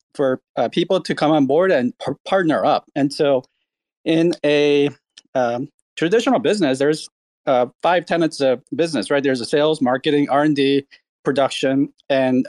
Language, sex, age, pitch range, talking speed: English, male, 40-59, 130-165 Hz, 160 wpm